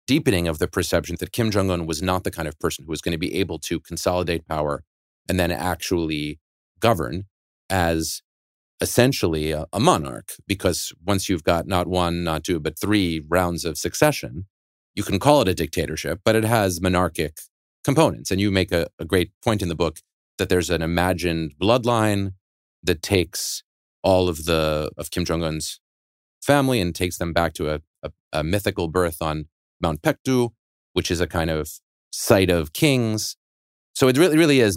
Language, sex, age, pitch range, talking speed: English, male, 30-49, 80-105 Hz, 180 wpm